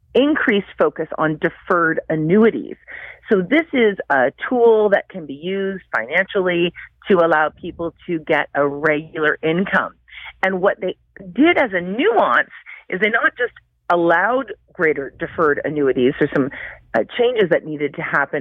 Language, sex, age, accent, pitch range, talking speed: English, female, 40-59, American, 150-215 Hz, 150 wpm